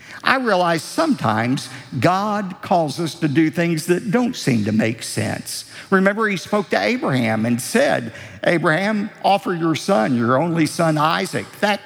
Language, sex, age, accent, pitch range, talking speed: English, male, 50-69, American, 140-215 Hz, 155 wpm